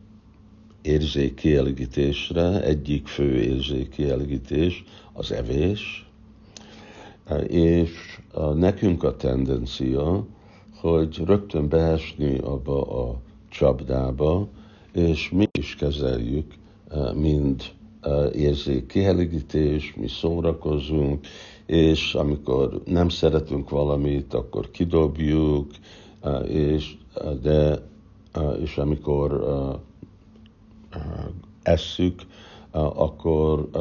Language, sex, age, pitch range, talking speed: Hungarian, male, 60-79, 70-90 Hz, 65 wpm